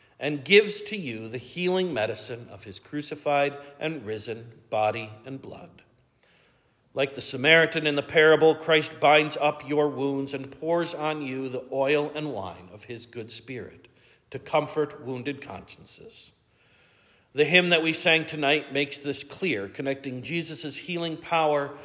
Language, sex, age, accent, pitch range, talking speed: English, male, 50-69, American, 130-170 Hz, 150 wpm